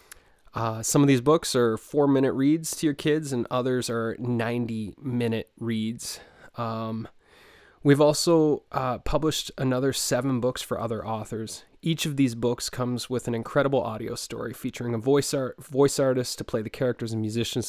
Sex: male